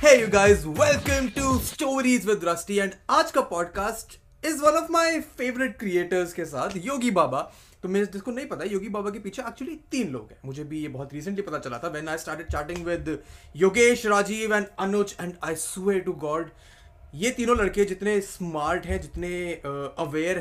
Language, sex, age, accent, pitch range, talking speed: Hindi, male, 20-39, native, 155-210 Hz, 185 wpm